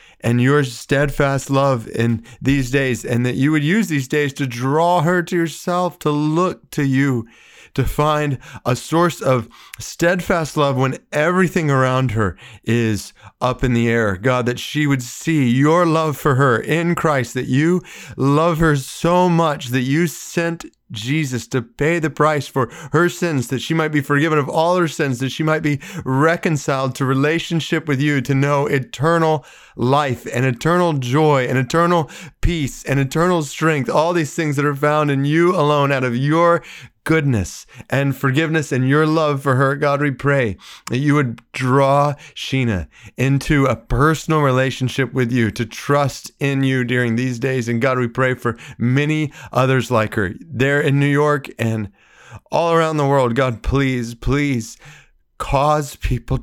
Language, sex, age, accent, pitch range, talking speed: English, male, 30-49, American, 125-155 Hz, 170 wpm